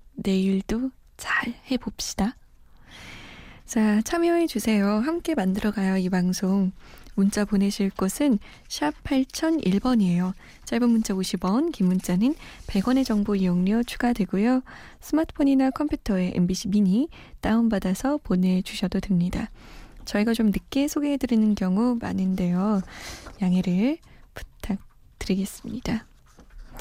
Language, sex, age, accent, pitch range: Korean, female, 20-39, native, 190-270 Hz